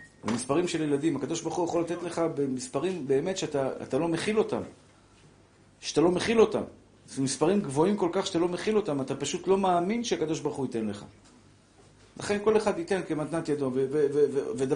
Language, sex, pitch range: Hebrew, male, 125-170 Hz